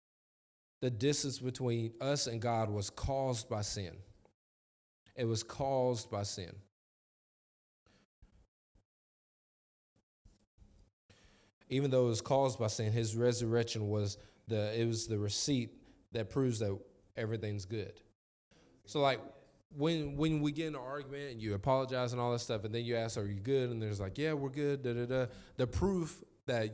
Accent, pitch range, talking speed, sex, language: American, 110-145 Hz, 155 wpm, male, English